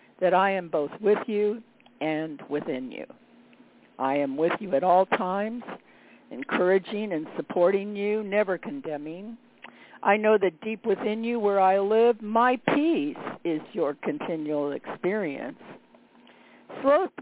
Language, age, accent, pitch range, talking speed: English, 60-79, American, 165-230 Hz, 130 wpm